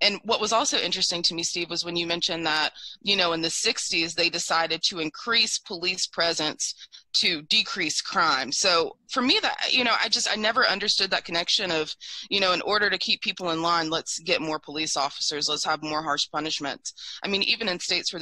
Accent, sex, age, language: American, female, 20-39, English